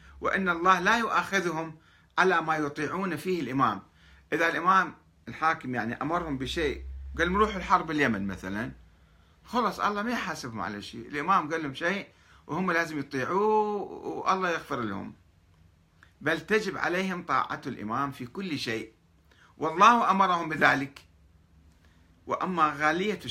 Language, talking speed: Arabic, 125 wpm